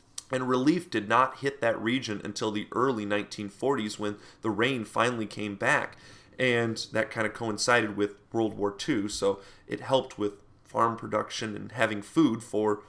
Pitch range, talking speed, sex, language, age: 105-130 Hz, 170 wpm, male, English, 30-49